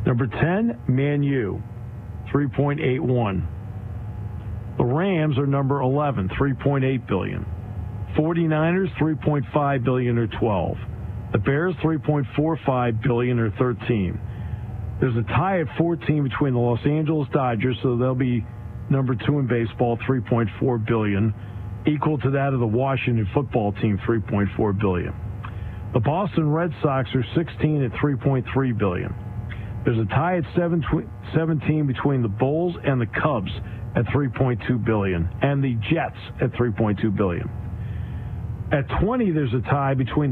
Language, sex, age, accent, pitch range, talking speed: English, male, 50-69, American, 110-145 Hz, 135 wpm